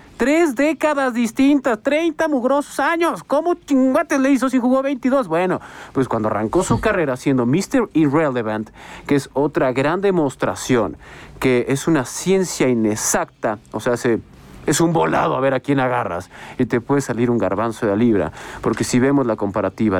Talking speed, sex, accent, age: 170 wpm, male, Mexican, 40-59